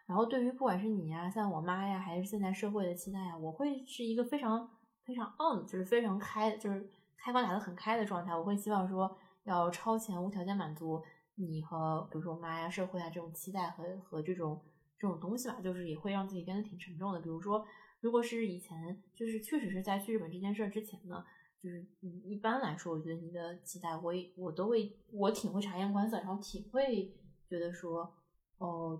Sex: female